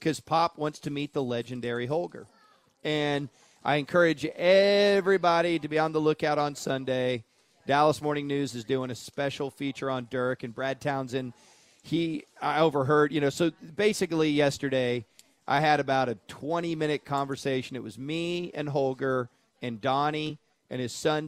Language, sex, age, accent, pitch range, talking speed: English, male, 40-59, American, 125-150 Hz, 160 wpm